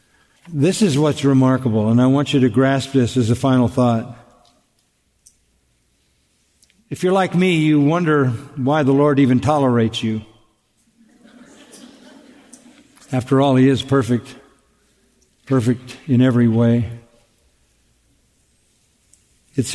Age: 50-69